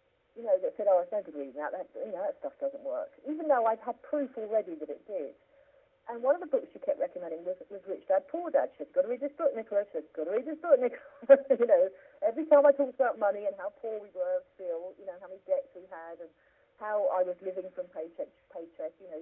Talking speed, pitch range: 270 wpm, 185-285 Hz